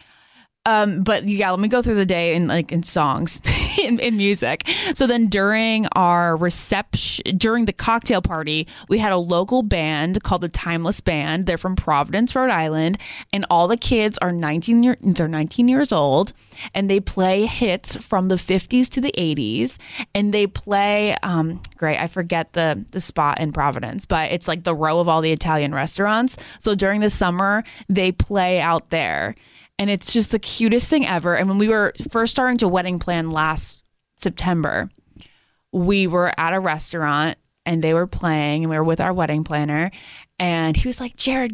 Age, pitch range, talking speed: 20-39, 160-210 Hz, 185 wpm